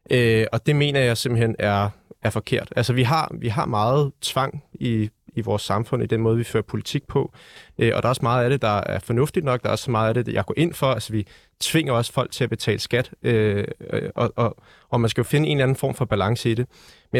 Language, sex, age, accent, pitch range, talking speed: Danish, male, 30-49, native, 110-135 Hz, 265 wpm